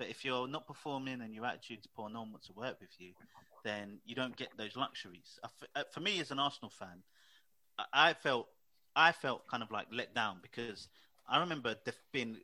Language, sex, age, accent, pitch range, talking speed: English, male, 30-49, British, 110-130 Hz, 200 wpm